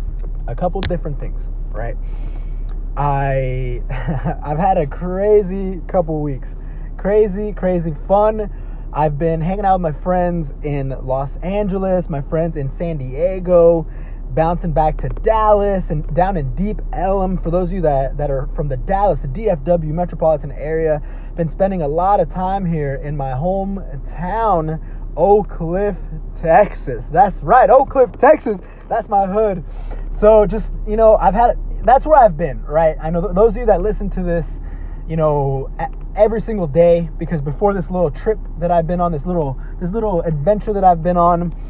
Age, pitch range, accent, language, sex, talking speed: 20-39, 150-200 Hz, American, English, male, 165 wpm